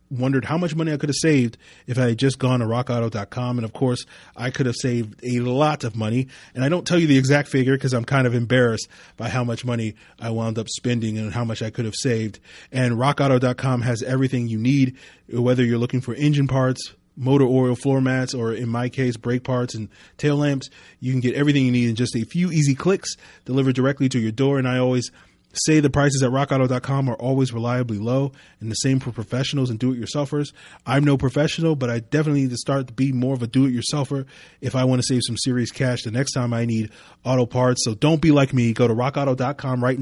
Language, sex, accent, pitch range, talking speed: English, male, American, 120-135 Hz, 230 wpm